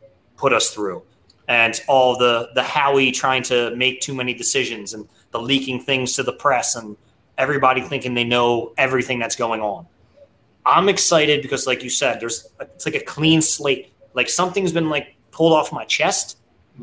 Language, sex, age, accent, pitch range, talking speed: English, male, 30-49, American, 125-160 Hz, 180 wpm